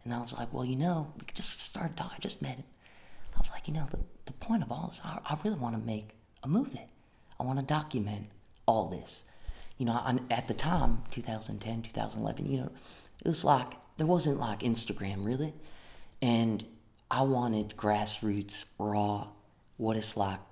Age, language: 30-49, English